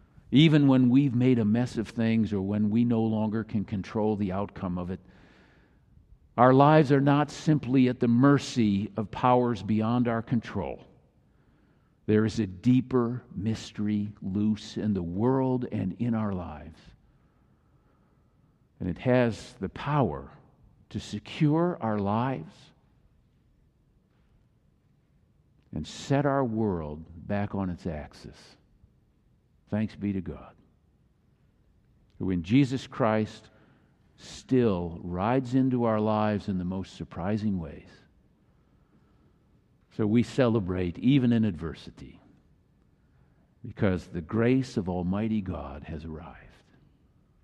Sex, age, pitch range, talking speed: male, 50-69, 95-125 Hz, 120 wpm